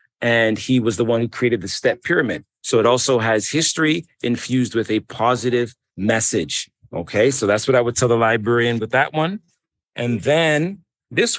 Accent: American